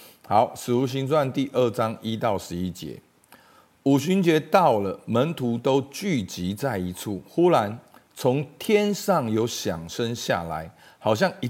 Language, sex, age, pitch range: Chinese, male, 50-69, 105-160 Hz